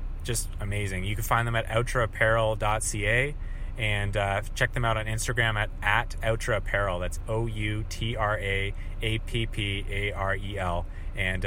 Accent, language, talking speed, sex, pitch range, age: American, English, 115 wpm, male, 95-120 Hz, 30-49